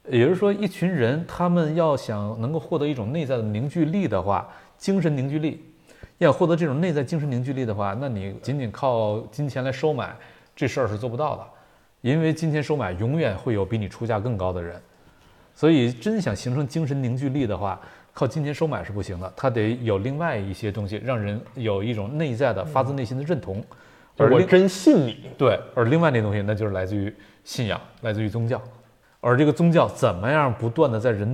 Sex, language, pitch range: male, Chinese, 105-150 Hz